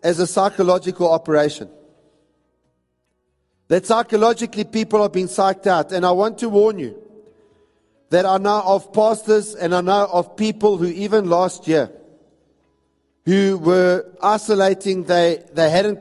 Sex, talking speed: male, 140 wpm